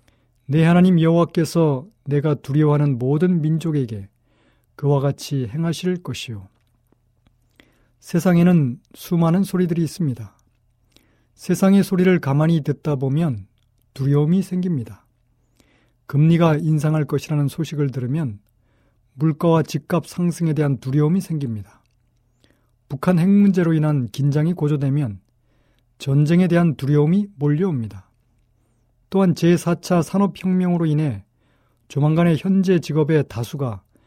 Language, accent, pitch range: Korean, native, 120-165 Hz